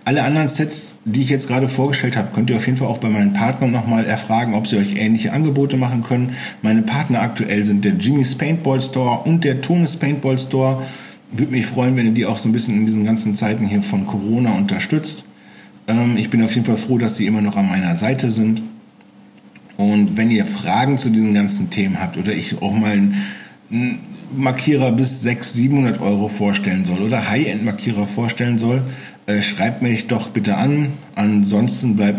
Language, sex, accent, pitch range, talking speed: German, male, German, 105-130 Hz, 195 wpm